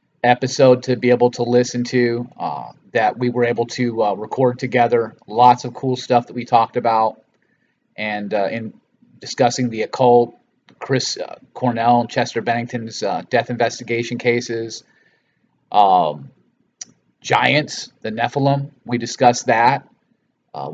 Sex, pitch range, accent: male, 115-130 Hz, American